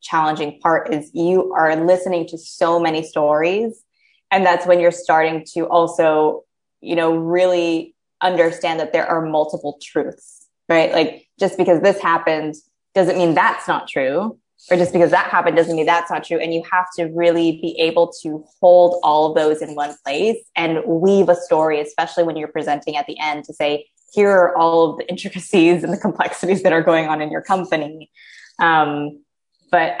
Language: English